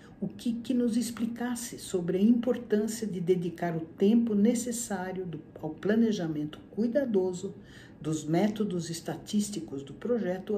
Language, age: Portuguese, 60-79